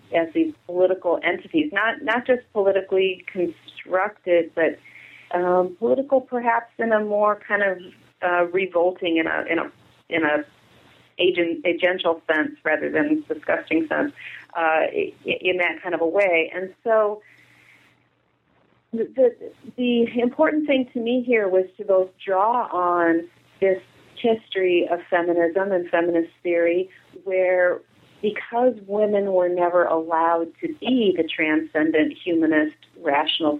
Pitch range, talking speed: 165-205 Hz, 130 wpm